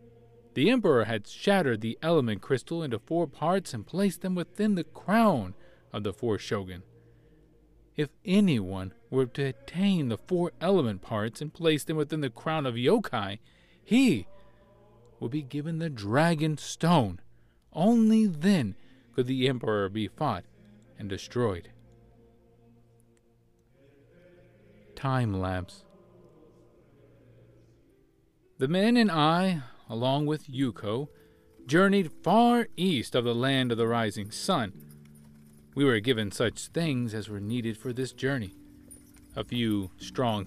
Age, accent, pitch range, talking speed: 40-59, American, 105-155 Hz, 130 wpm